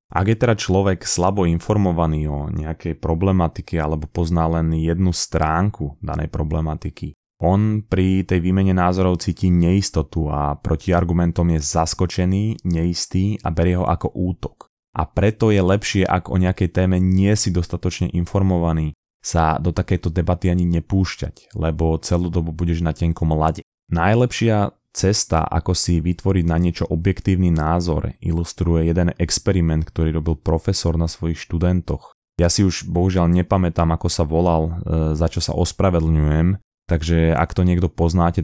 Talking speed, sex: 150 wpm, male